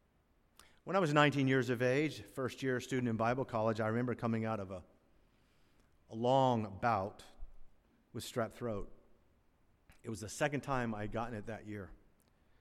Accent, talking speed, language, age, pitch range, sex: American, 170 wpm, English, 50-69, 100-140 Hz, male